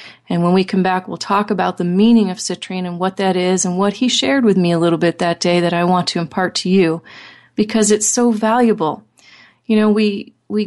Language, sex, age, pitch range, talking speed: English, female, 30-49, 180-220 Hz, 235 wpm